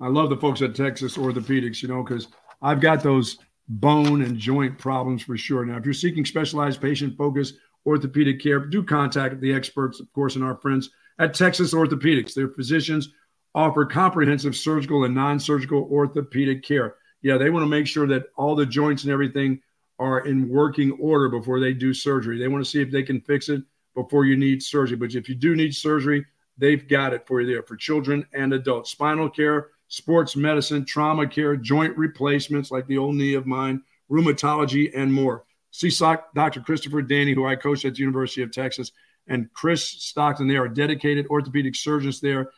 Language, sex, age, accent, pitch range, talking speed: English, male, 50-69, American, 130-150 Hz, 190 wpm